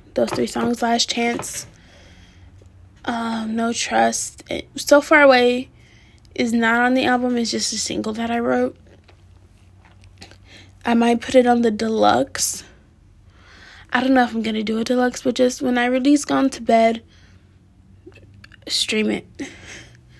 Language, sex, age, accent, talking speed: English, female, 10-29, American, 150 wpm